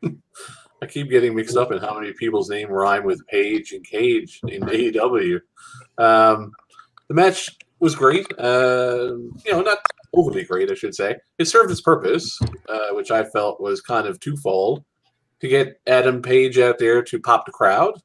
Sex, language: male, English